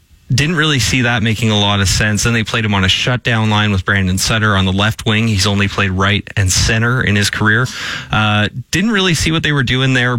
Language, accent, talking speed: English, American, 245 wpm